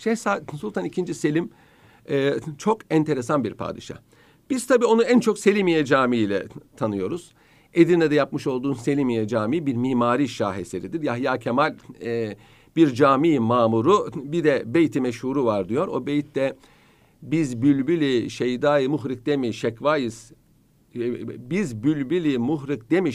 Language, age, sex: Turkish, 50-69, male